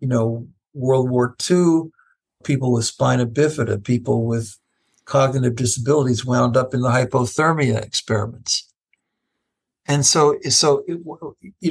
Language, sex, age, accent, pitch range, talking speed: English, male, 60-79, American, 125-150 Hz, 125 wpm